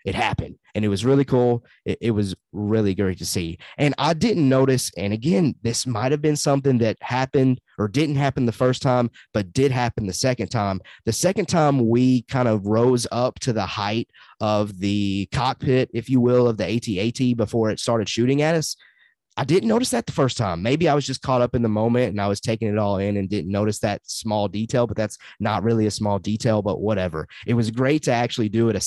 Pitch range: 105-130 Hz